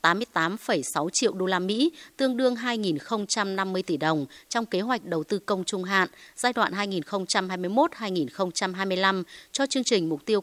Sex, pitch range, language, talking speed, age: female, 170-215 Hz, Vietnamese, 150 wpm, 20-39